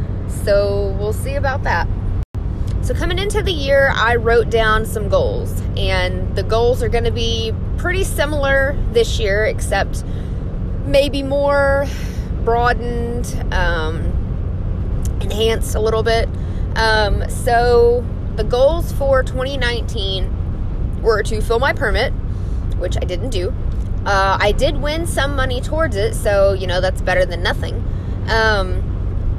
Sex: female